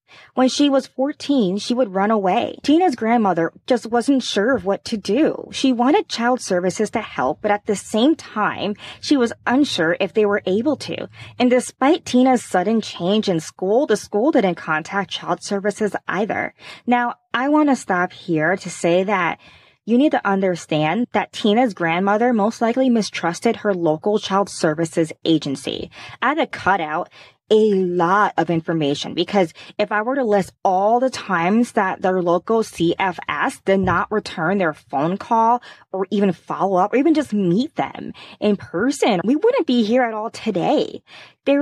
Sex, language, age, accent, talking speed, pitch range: female, English, 20-39, American, 170 wpm, 190-250 Hz